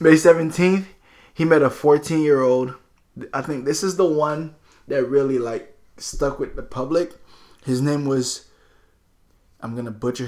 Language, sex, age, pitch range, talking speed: English, male, 20-39, 110-140 Hz, 160 wpm